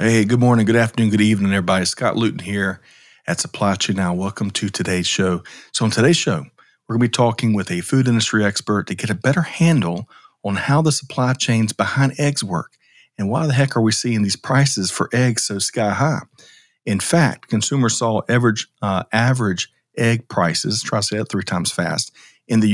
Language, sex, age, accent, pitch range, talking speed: English, male, 40-59, American, 100-120 Hz, 205 wpm